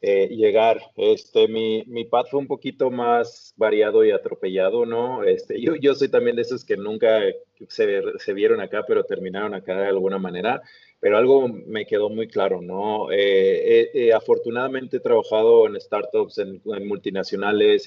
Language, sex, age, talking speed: Spanish, male, 30-49, 170 wpm